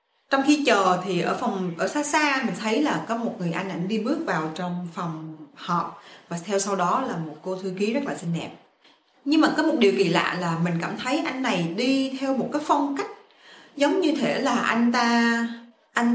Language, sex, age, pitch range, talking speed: Vietnamese, female, 20-39, 190-280 Hz, 230 wpm